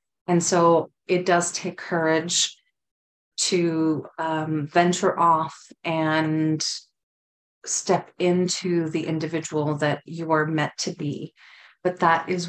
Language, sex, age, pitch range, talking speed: English, female, 30-49, 155-175 Hz, 115 wpm